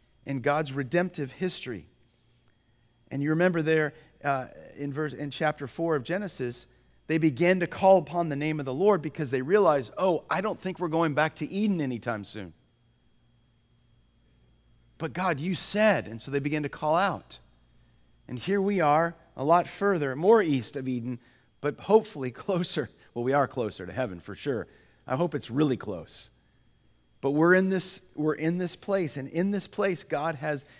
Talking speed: 175 wpm